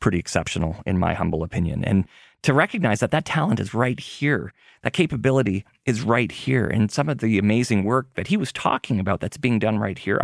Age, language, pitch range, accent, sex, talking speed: 30-49, English, 100-130 Hz, American, male, 210 wpm